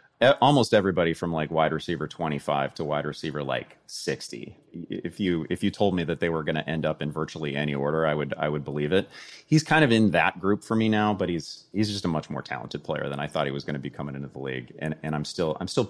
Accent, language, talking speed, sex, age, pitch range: American, English, 270 wpm, male, 30-49, 70-105 Hz